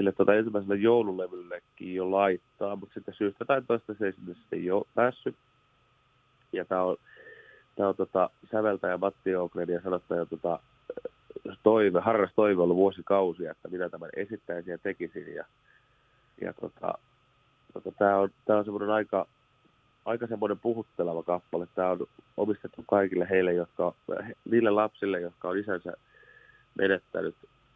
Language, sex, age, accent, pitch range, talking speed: Finnish, male, 30-49, native, 85-105 Hz, 120 wpm